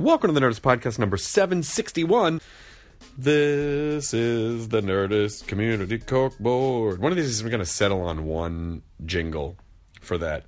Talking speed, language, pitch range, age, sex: 150 wpm, English, 100-155 Hz, 30-49, male